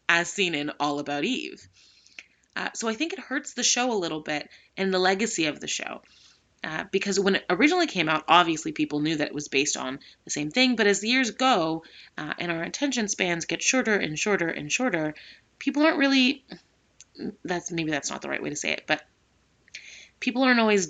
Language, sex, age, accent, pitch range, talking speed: English, female, 20-39, American, 150-210 Hz, 215 wpm